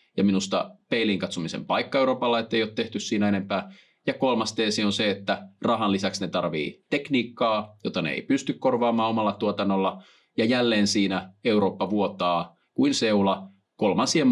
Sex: male